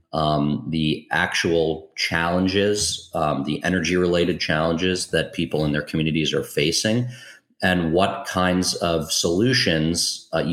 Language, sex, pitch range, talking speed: English, male, 75-90 Hz, 125 wpm